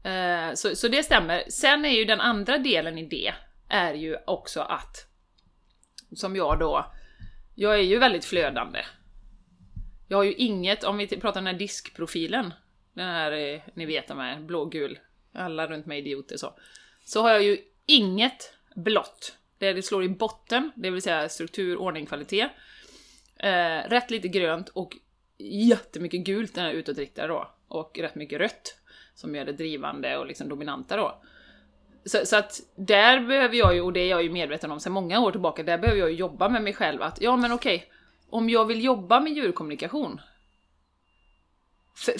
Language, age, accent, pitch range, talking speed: Swedish, 30-49, native, 165-240 Hz, 175 wpm